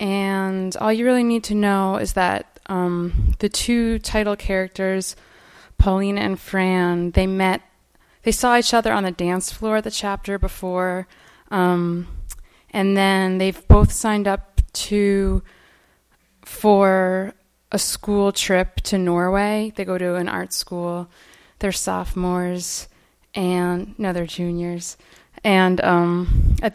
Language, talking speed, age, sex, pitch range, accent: English, 135 wpm, 20-39, female, 180-210 Hz, American